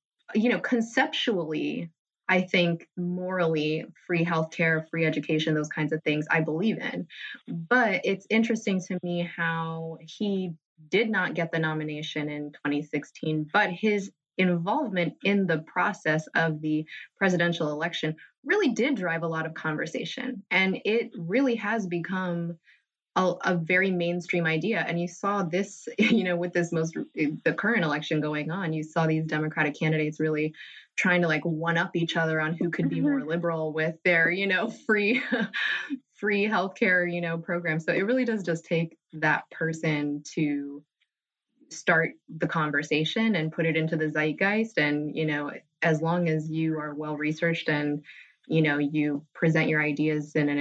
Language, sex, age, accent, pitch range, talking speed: English, female, 20-39, American, 155-185 Hz, 165 wpm